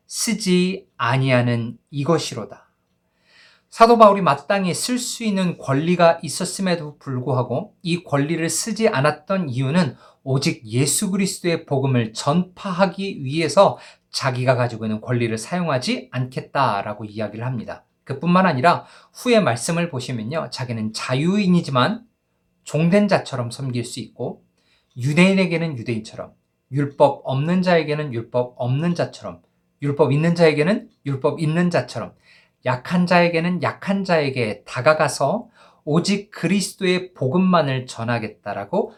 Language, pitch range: Korean, 125-175 Hz